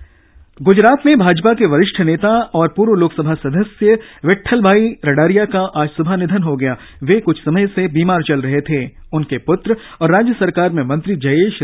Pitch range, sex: 145-200 Hz, male